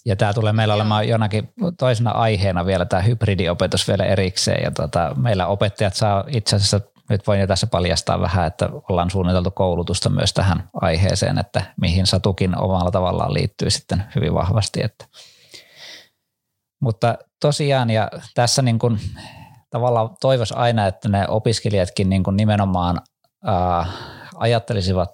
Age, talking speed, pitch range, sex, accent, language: 20-39, 145 wpm, 90-110 Hz, male, native, Finnish